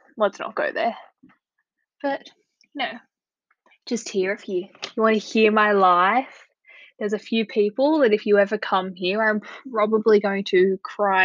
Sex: female